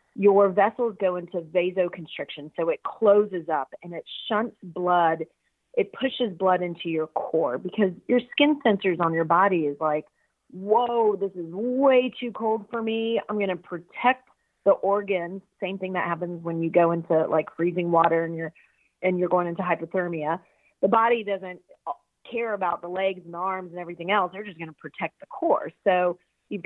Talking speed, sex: 180 wpm, female